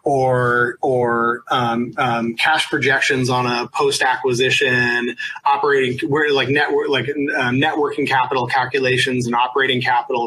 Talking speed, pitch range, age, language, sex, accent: 130 wpm, 125-150 Hz, 30-49, English, male, American